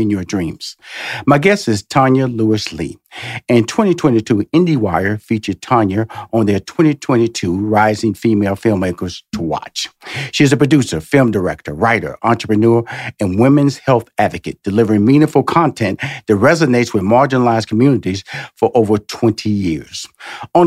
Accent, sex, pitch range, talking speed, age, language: American, male, 110-140 Hz, 135 wpm, 50-69, English